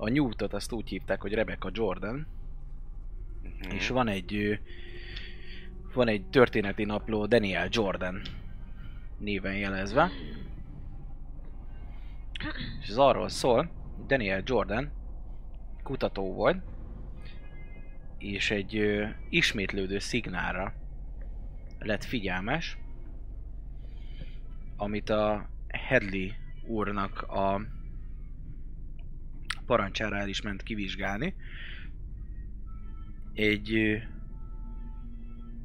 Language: Hungarian